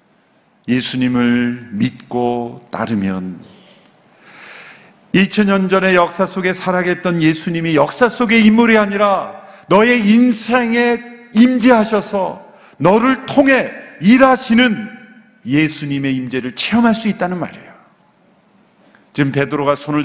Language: Korean